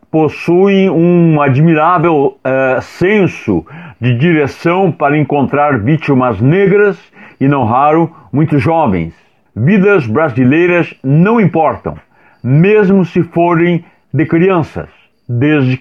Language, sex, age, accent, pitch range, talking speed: Portuguese, male, 60-79, Brazilian, 140-185 Hz, 100 wpm